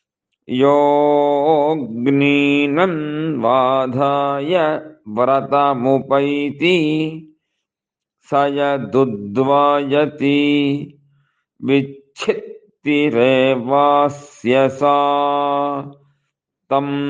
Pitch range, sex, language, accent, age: 140-145 Hz, male, English, Indian, 50-69